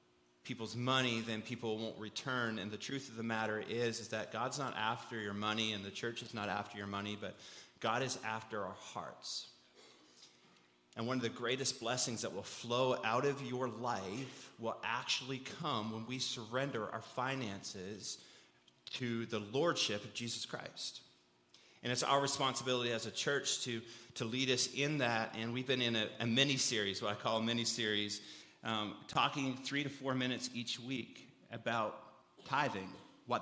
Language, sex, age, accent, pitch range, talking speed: English, male, 30-49, American, 110-125 Hz, 175 wpm